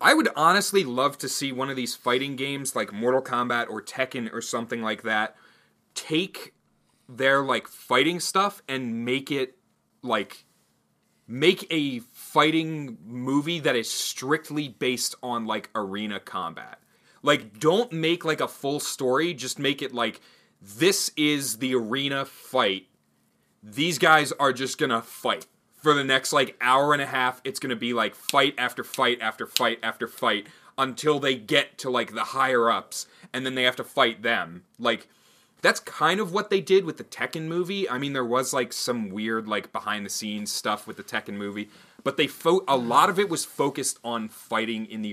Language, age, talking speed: English, 30-49, 180 wpm